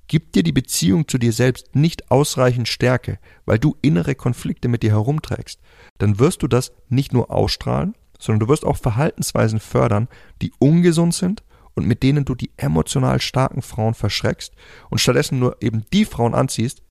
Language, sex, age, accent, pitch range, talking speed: German, male, 30-49, German, 100-130 Hz, 175 wpm